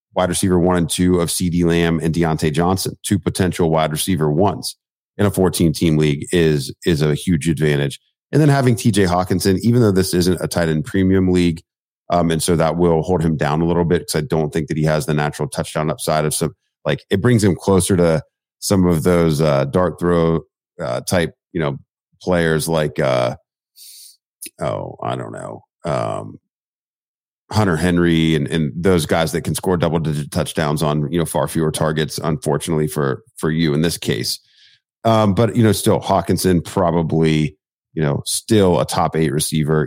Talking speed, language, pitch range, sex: 190 wpm, English, 80-95 Hz, male